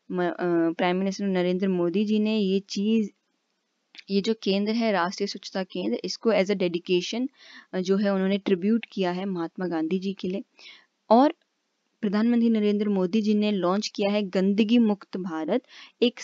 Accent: native